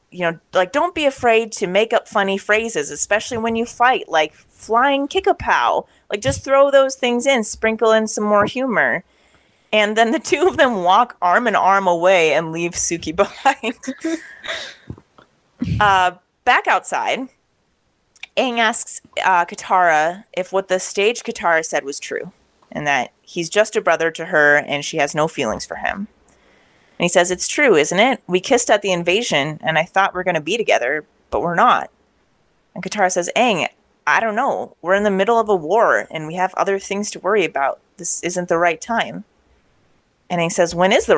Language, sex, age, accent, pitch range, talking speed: English, female, 30-49, American, 175-230 Hz, 190 wpm